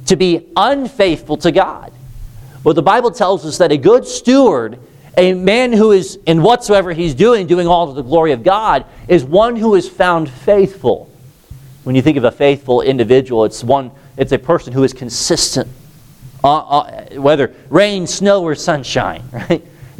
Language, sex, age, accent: English, male, 40-59, American